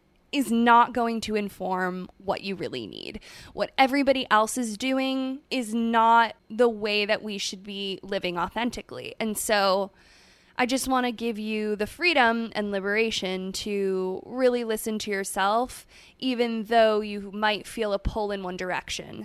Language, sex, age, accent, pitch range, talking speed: English, female, 20-39, American, 200-245 Hz, 160 wpm